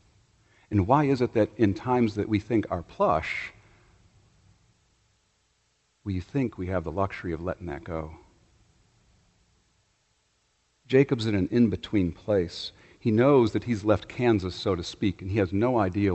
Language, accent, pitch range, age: English, American, 95-110 Hz, 50-69